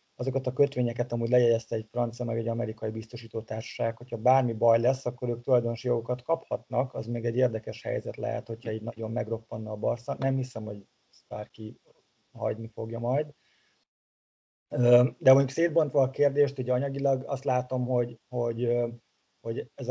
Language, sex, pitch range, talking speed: Hungarian, male, 115-130 Hz, 155 wpm